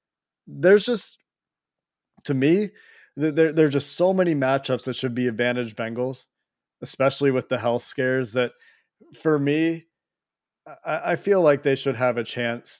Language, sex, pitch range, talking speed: English, male, 120-150 Hz, 150 wpm